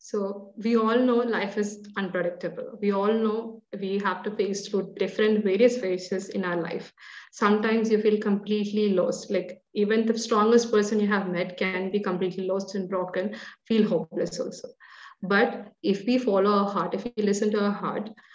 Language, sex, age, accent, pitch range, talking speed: Malayalam, female, 50-69, native, 190-215 Hz, 180 wpm